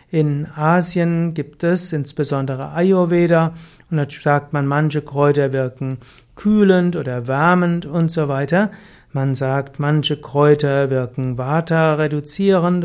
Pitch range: 145-175 Hz